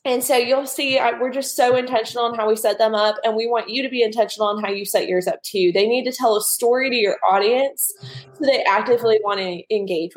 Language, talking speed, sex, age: English, 270 wpm, female, 20-39